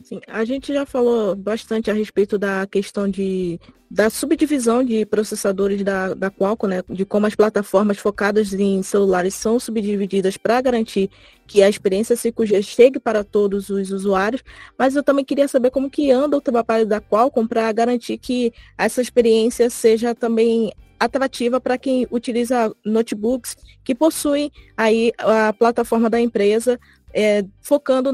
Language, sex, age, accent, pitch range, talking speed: Portuguese, female, 20-39, Brazilian, 210-245 Hz, 145 wpm